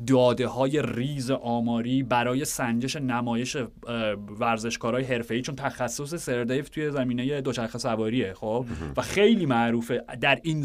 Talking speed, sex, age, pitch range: 130 wpm, male, 30-49, 115-145 Hz